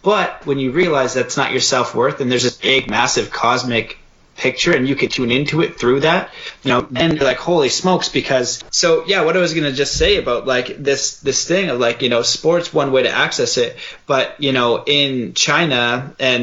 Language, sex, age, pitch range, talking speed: English, male, 30-49, 120-155 Hz, 225 wpm